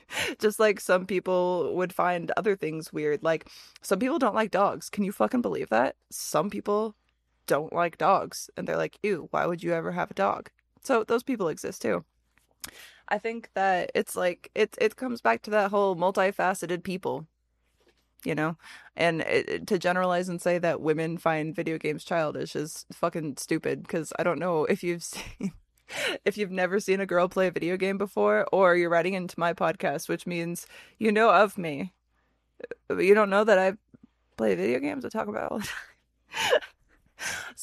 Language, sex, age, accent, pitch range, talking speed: English, female, 20-39, American, 170-215 Hz, 185 wpm